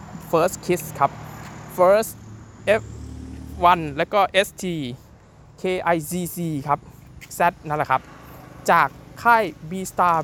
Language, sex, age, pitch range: Thai, male, 20-39, 155-195 Hz